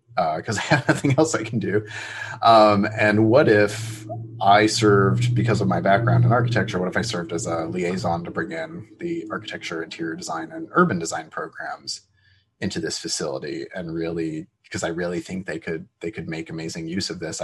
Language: English